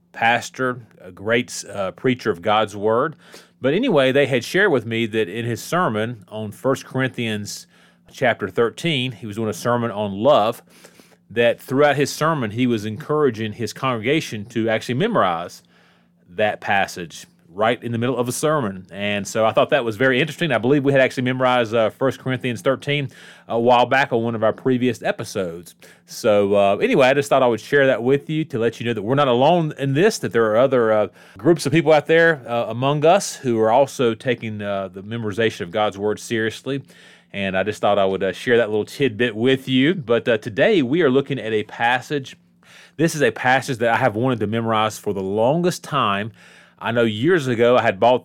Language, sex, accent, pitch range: English, male, American, 110-130 Hz